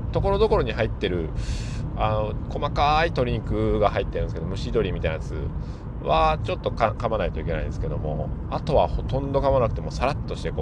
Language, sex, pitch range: Japanese, male, 90-120 Hz